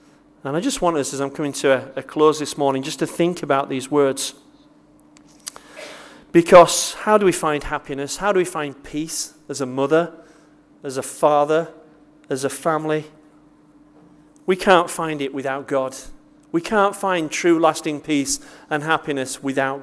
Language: English